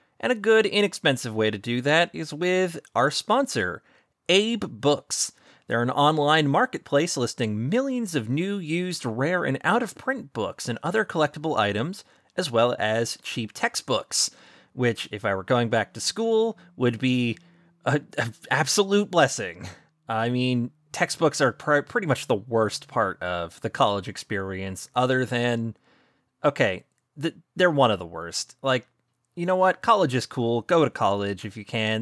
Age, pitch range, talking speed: 30-49, 120-180 Hz, 155 wpm